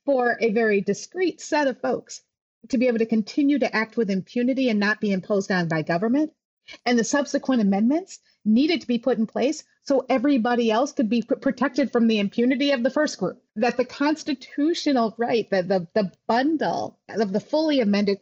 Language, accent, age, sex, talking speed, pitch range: English, American, 30-49, female, 190 wpm, 195-270 Hz